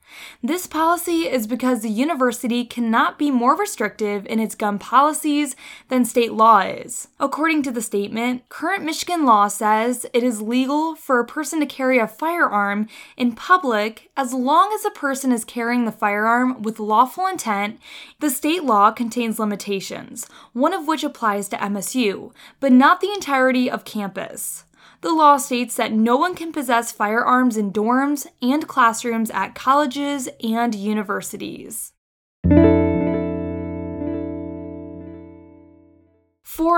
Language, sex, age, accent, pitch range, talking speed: English, female, 10-29, American, 220-310 Hz, 140 wpm